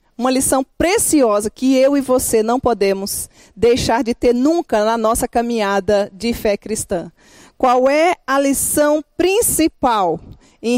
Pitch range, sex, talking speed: 220-270 Hz, female, 140 wpm